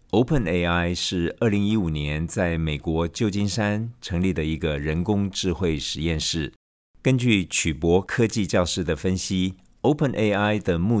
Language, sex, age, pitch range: Chinese, male, 50-69, 80-100 Hz